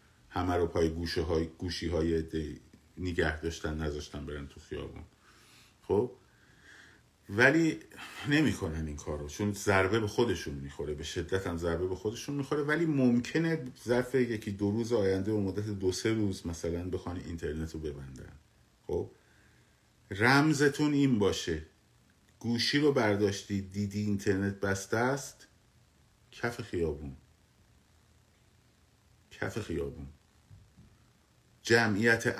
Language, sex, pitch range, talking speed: Persian, male, 85-110 Hz, 120 wpm